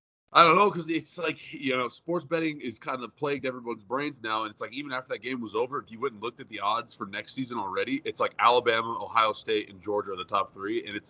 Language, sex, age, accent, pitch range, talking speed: English, male, 30-49, American, 105-145 Hz, 270 wpm